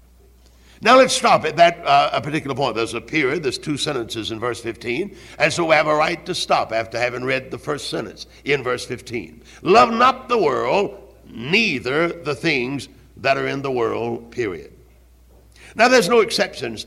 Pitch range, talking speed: 115-170 Hz, 185 wpm